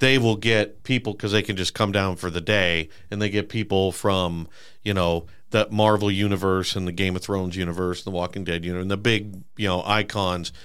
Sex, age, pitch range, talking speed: male, 50-69, 95-115 Hz, 220 wpm